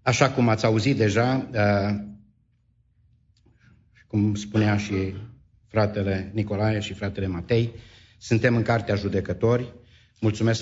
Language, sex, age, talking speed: English, male, 50-69, 100 wpm